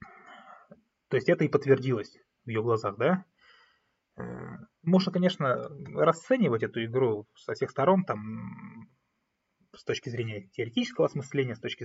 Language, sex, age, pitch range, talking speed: Russian, male, 20-39, 115-160 Hz, 125 wpm